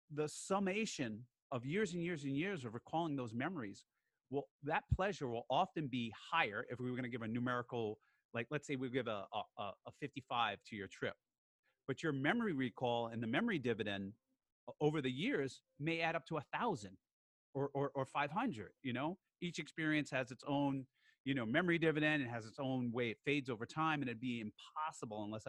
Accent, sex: American, male